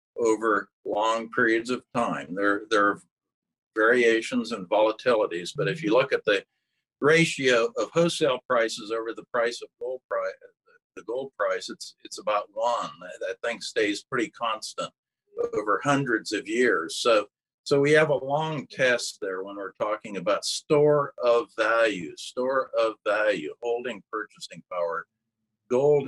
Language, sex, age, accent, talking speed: English, male, 50-69, American, 150 wpm